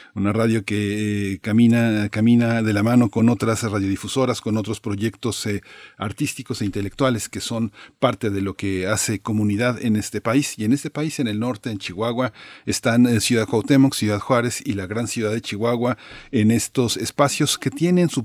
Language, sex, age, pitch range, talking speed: Spanish, male, 40-59, 100-120 Hz, 185 wpm